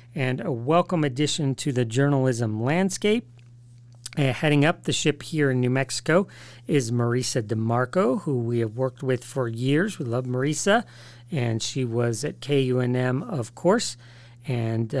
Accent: American